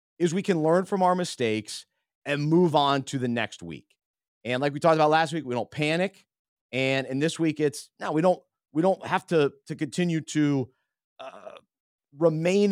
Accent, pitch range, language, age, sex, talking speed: American, 135-170 Hz, English, 30-49, male, 195 wpm